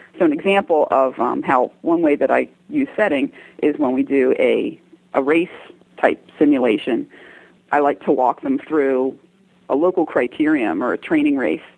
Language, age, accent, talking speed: English, 40-59, American, 170 wpm